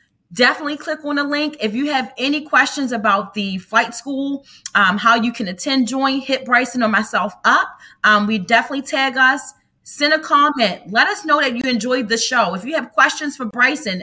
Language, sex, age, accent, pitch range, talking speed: English, female, 30-49, American, 210-280 Hz, 200 wpm